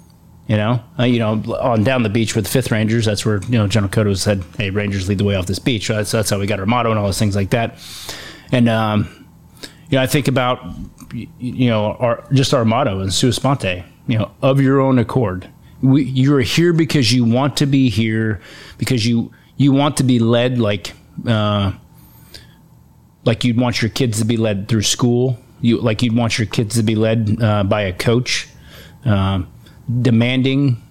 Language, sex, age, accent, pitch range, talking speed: English, male, 30-49, American, 105-130 Hz, 205 wpm